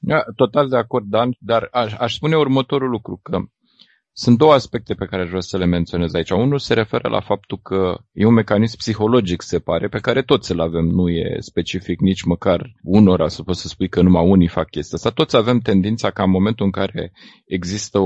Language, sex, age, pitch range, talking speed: Romanian, male, 30-49, 95-125 Hz, 210 wpm